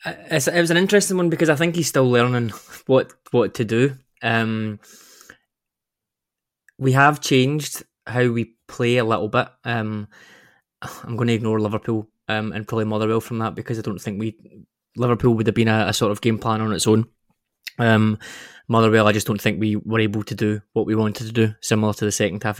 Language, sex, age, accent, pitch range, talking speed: English, male, 20-39, British, 110-120 Hz, 200 wpm